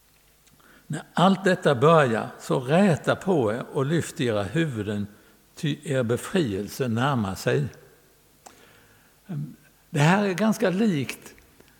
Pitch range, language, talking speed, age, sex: 120-170 Hz, Swedish, 110 wpm, 60-79, male